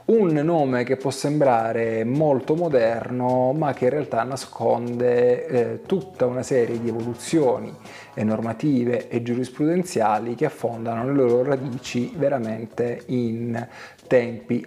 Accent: native